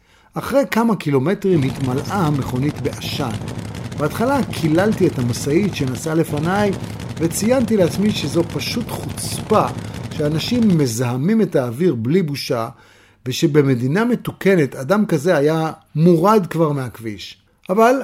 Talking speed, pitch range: 105 wpm, 130-195 Hz